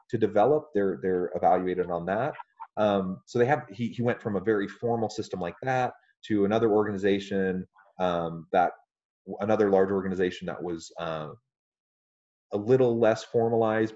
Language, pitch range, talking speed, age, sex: English, 90-110 Hz, 155 wpm, 30-49, male